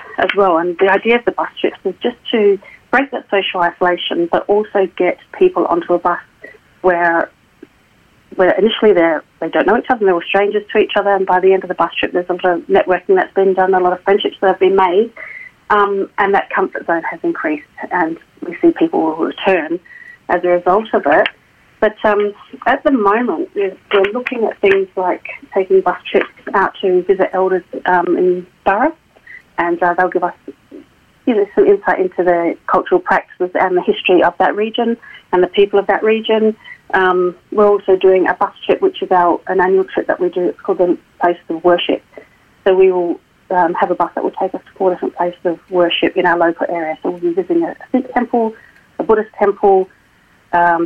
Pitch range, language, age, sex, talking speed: 180-230 Hz, English, 40-59, female, 210 wpm